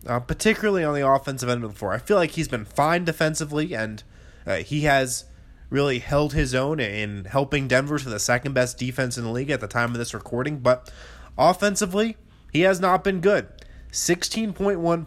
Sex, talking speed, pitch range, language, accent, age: male, 190 wpm, 115-160 Hz, English, American, 20-39